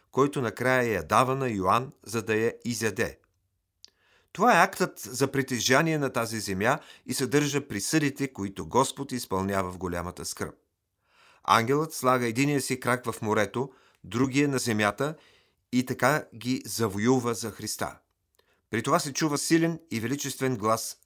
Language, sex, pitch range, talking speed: Bulgarian, male, 100-135 Hz, 145 wpm